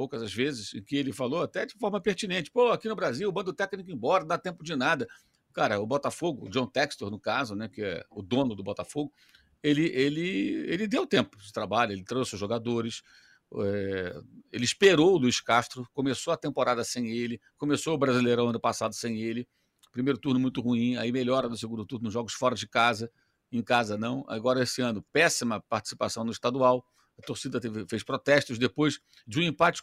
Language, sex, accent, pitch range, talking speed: Portuguese, male, Brazilian, 115-155 Hz, 200 wpm